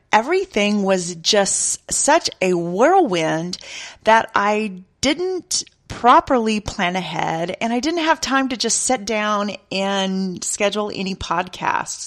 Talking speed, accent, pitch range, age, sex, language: 125 wpm, American, 190-265 Hz, 40-59, female, English